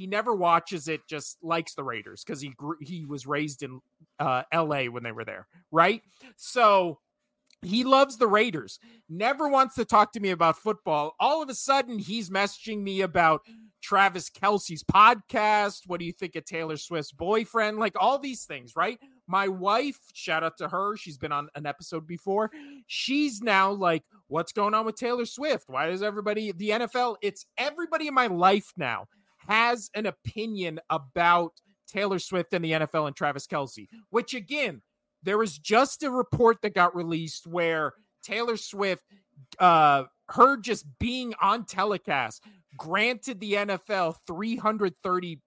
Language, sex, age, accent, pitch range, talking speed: English, male, 30-49, American, 165-225 Hz, 165 wpm